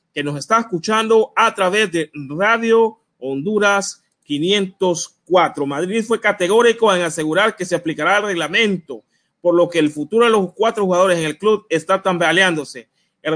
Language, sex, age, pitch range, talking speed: English, male, 30-49, 165-205 Hz, 155 wpm